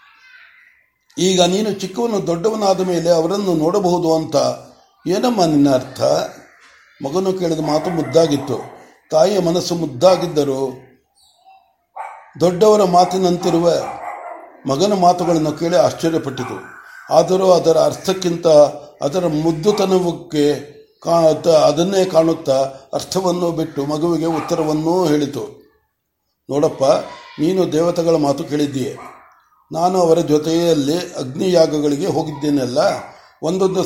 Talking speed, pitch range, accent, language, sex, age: 85 wpm, 155-190 Hz, native, Kannada, male, 60-79